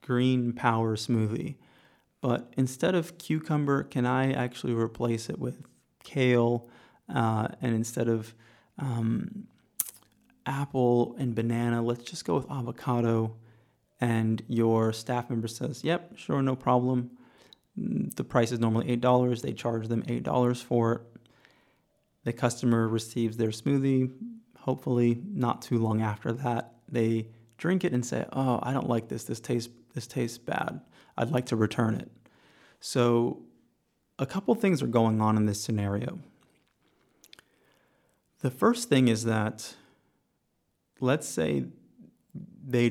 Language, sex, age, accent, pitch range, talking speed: English, male, 30-49, American, 115-130 Hz, 135 wpm